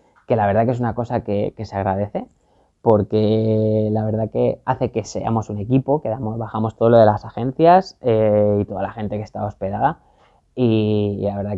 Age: 20-39